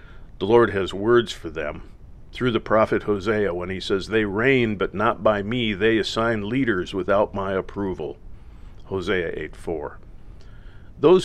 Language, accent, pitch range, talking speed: English, American, 95-120 Hz, 155 wpm